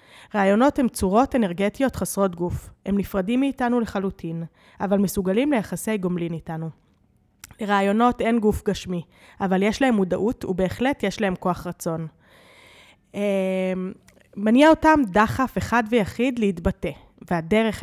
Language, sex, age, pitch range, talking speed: Hebrew, female, 20-39, 185-240 Hz, 120 wpm